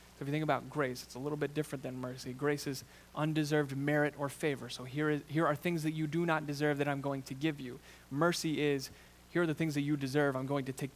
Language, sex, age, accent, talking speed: English, male, 20-39, American, 255 wpm